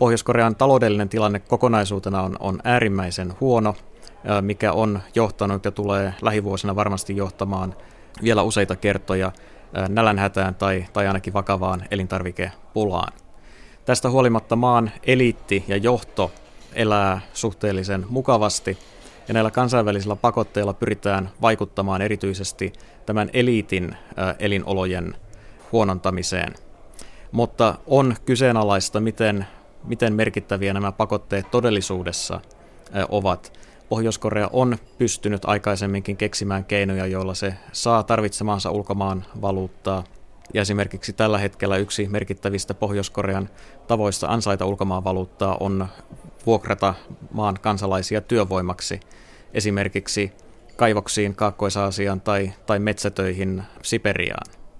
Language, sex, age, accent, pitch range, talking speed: Finnish, male, 30-49, native, 95-110 Hz, 100 wpm